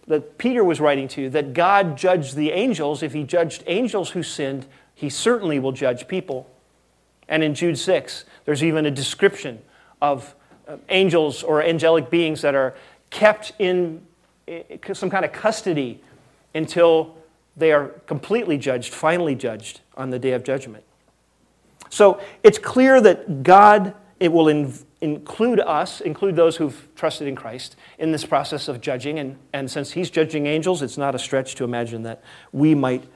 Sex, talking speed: male, 165 wpm